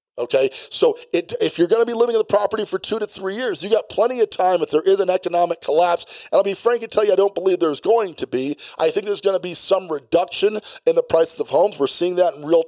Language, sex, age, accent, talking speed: English, male, 40-59, American, 280 wpm